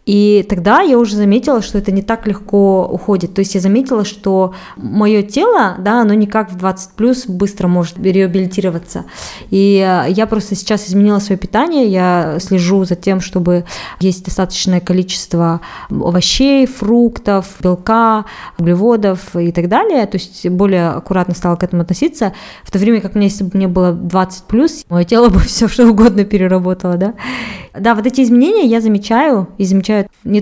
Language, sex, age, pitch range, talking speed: Russian, female, 20-39, 180-220 Hz, 170 wpm